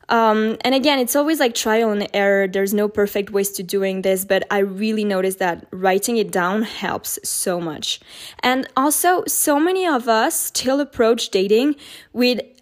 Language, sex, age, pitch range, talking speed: English, female, 10-29, 195-250 Hz, 175 wpm